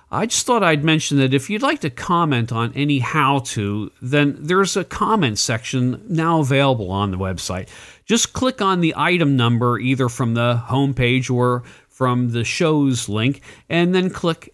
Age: 50-69